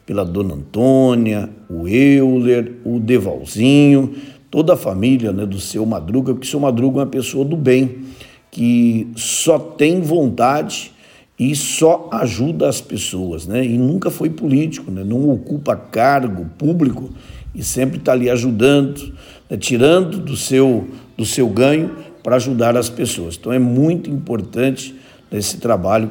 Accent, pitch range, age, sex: Brazilian, 105-135 Hz, 60-79, male